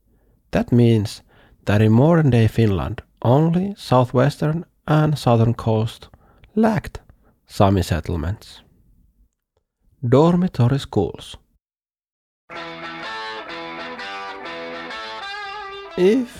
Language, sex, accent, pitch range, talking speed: English, male, Finnish, 95-140 Hz, 65 wpm